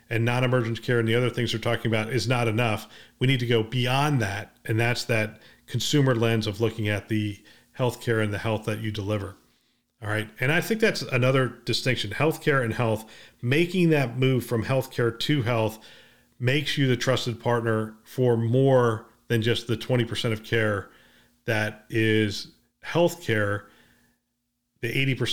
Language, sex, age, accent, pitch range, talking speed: English, male, 40-59, American, 110-130 Hz, 170 wpm